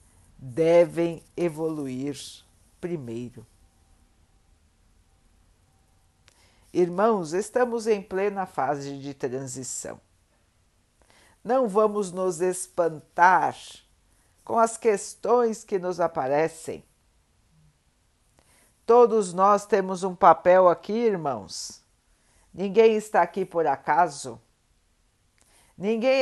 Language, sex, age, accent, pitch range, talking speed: Portuguese, female, 50-69, Brazilian, 130-205 Hz, 75 wpm